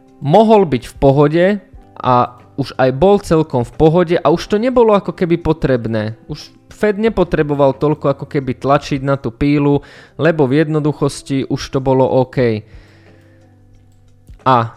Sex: male